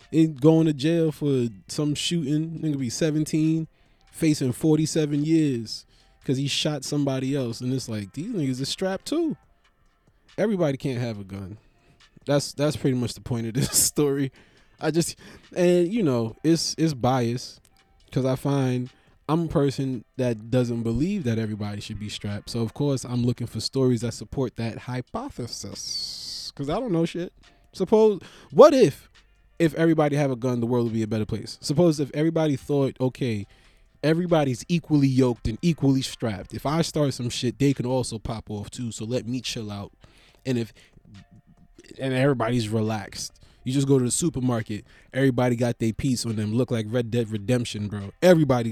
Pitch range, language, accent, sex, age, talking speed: 115-150 Hz, English, American, male, 20-39, 175 wpm